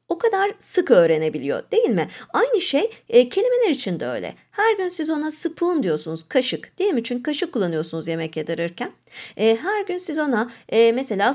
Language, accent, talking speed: Turkish, native, 180 wpm